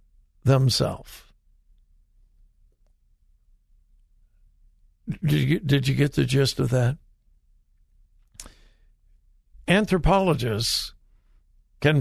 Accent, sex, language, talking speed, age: American, male, English, 60 wpm, 60-79